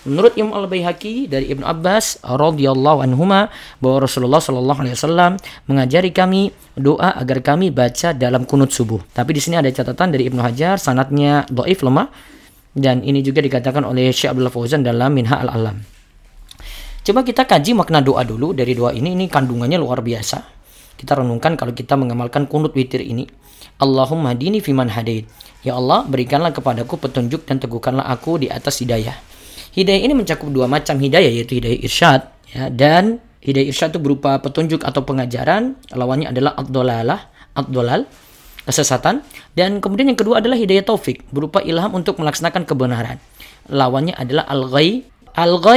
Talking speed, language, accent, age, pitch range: 160 wpm, Indonesian, native, 20-39, 130-170 Hz